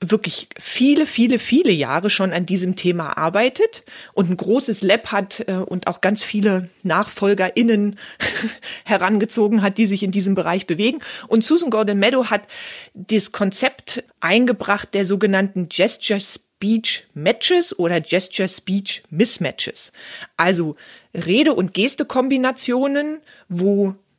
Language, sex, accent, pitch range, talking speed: English, female, German, 185-230 Hz, 110 wpm